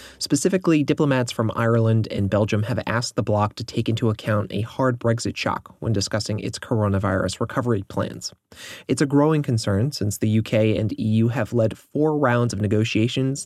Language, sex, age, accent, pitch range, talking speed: English, male, 30-49, American, 100-120 Hz, 175 wpm